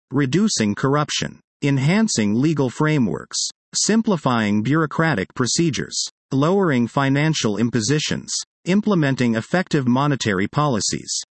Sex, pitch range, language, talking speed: male, 120-165 Hz, English, 80 wpm